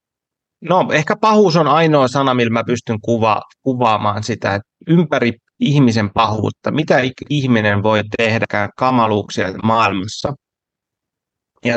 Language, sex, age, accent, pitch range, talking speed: Finnish, male, 30-49, native, 115-155 Hz, 115 wpm